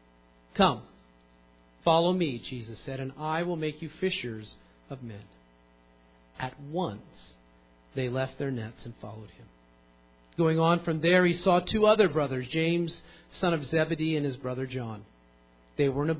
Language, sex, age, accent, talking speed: English, male, 50-69, American, 160 wpm